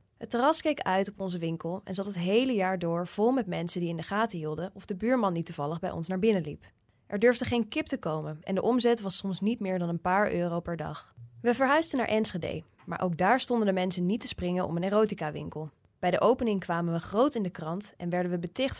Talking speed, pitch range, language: 255 wpm, 170-225 Hz, English